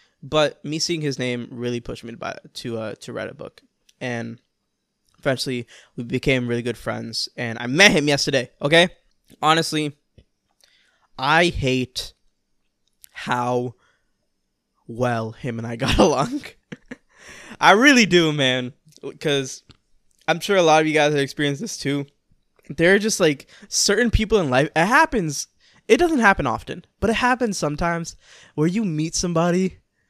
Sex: male